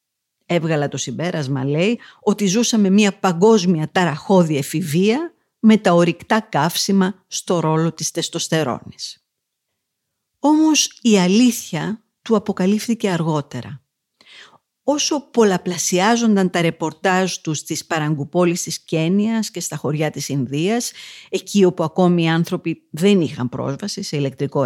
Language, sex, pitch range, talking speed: Greek, female, 155-205 Hz, 115 wpm